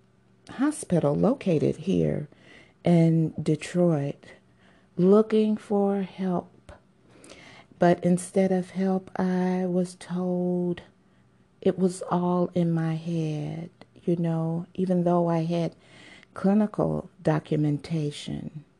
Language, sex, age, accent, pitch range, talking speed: English, female, 50-69, American, 135-175 Hz, 95 wpm